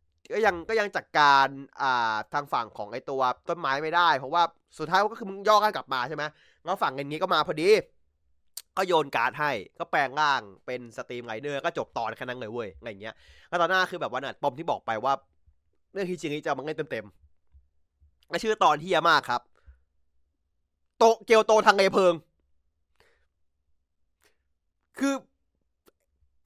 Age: 20-39